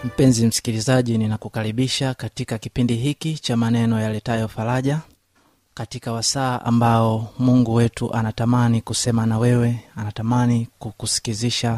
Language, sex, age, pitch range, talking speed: Swahili, male, 30-49, 110-120 Hz, 105 wpm